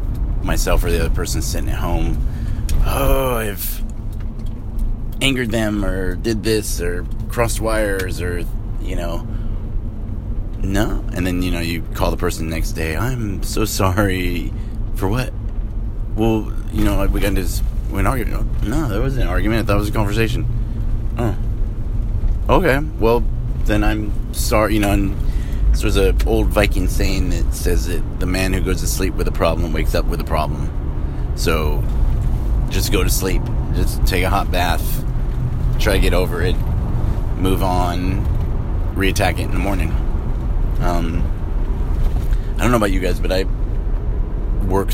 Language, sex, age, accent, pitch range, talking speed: English, male, 30-49, American, 85-110 Hz, 160 wpm